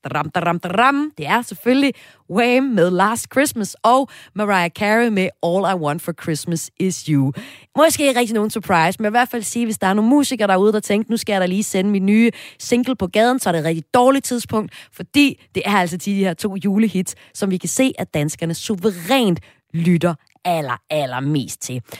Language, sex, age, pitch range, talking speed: Danish, female, 30-49, 165-230 Hz, 205 wpm